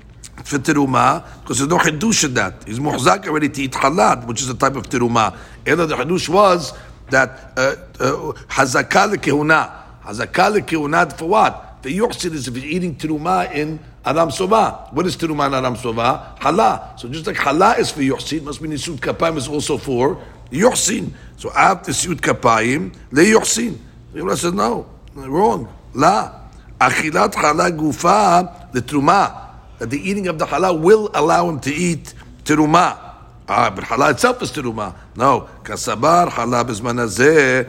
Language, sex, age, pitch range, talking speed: English, male, 60-79, 125-165 Hz, 160 wpm